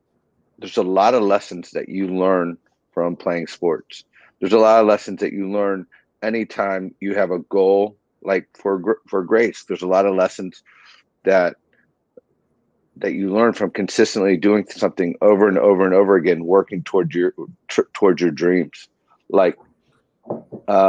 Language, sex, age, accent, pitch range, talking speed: English, male, 40-59, American, 95-105 Hz, 155 wpm